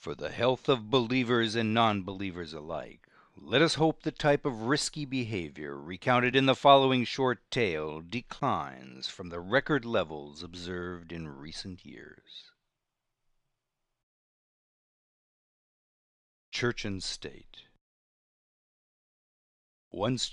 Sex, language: male, English